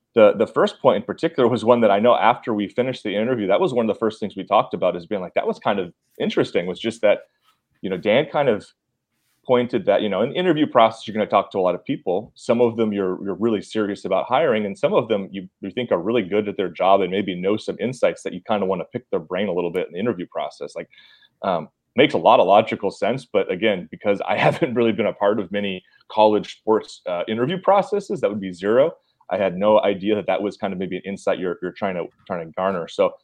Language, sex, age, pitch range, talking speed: English, male, 30-49, 100-145 Hz, 270 wpm